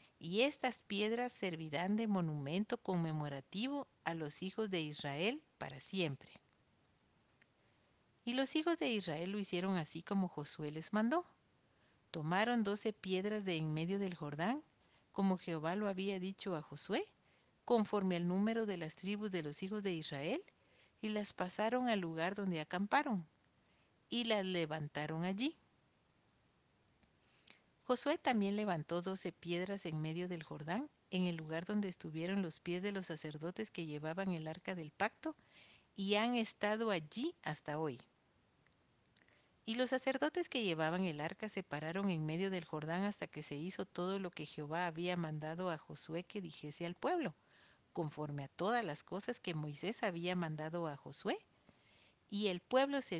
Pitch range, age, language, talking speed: 160-215 Hz, 50-69, Spanish, 155 wpm